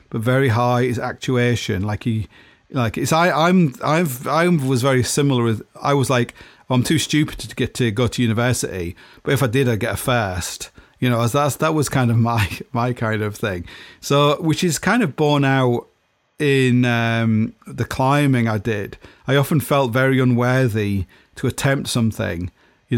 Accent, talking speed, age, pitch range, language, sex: British, 190 wpm, 40-59, 110-130 Hz, English, male